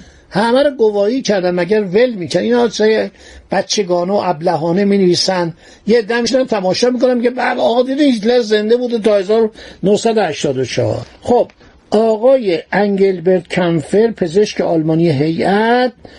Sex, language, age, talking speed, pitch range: male, Persian, 60-79, 115 wpm, 180-235 Hz